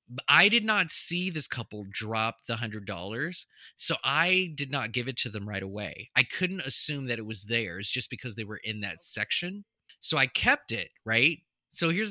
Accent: American